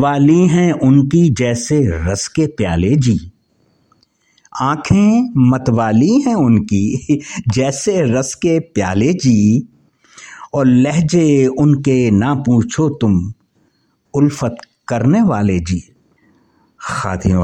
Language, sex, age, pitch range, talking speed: English, male, 60-79, 115-160 Hz, 95 wpm